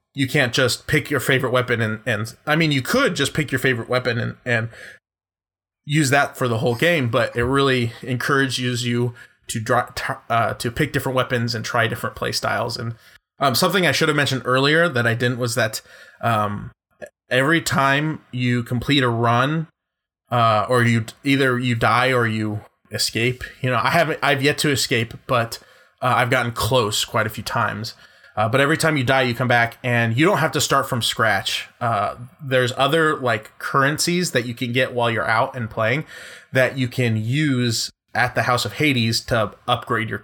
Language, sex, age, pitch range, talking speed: English, male, 20-39, 115-140 Hz, 200 wpm